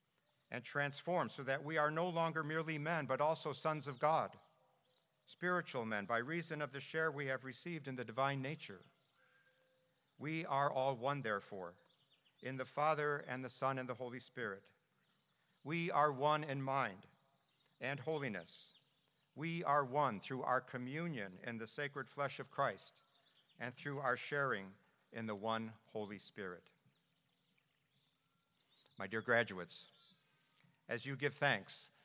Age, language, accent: 60-79, English, American